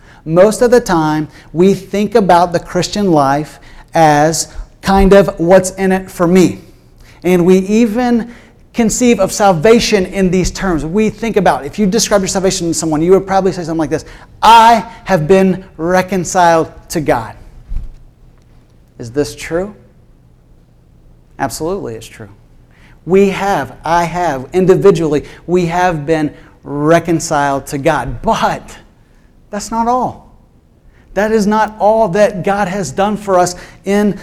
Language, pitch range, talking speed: English, 155-205 Hz, 145 wpm